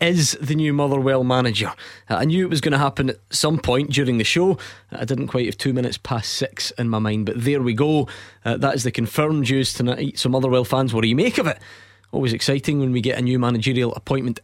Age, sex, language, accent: 20-39, male, English, British